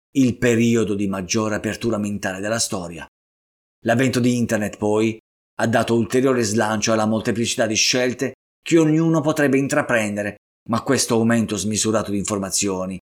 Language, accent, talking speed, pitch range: Italian, native, 135 wpm, 95-125 Hz